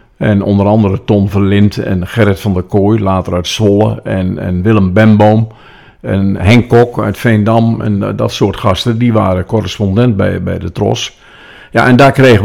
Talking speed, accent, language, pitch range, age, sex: 180 wpm, Dutch, Dutch, 100-115 Hz, 50-69, male